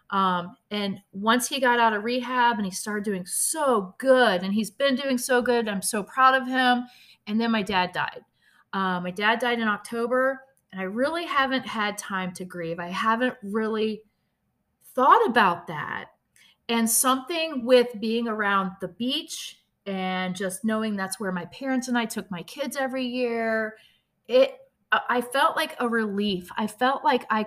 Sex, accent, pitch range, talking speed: female, American, 190-240 Hz, 175 wpm